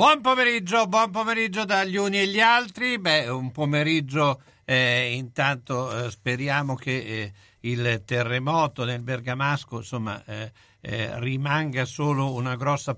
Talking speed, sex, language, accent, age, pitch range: 135 wpm, male, Italian, native, 60-79, 105-135 Hz